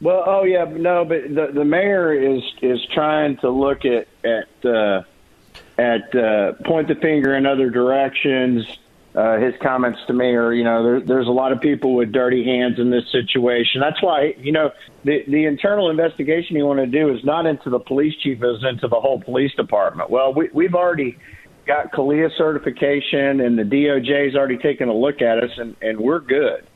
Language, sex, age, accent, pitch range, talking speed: English, male, 50-69, American, 120-145 Hz, 195 wpm